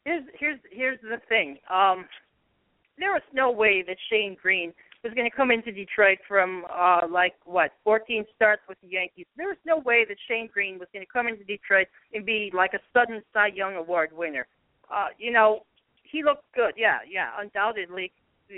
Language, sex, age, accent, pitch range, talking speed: English, female, 40-59, American, 190-245 Hz, 190 wpm